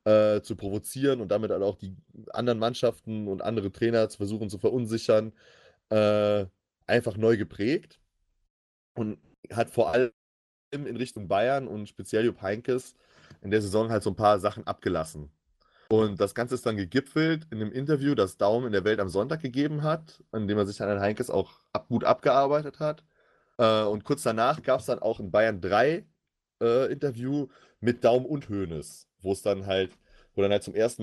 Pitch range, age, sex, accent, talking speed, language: 100-125 Hz, 30-49, male, German, 185 wpm, German